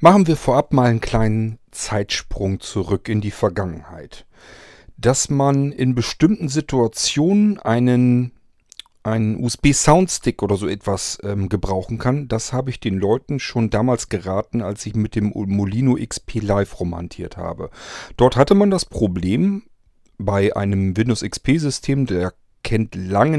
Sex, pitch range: male, 105-130 Hz